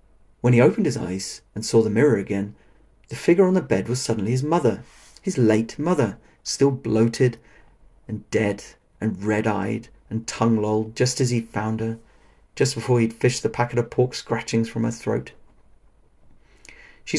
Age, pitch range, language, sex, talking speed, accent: 40-59, 105-125 Hz, English, male, 170 wpm, British